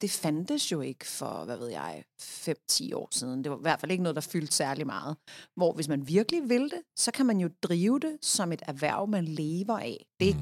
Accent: native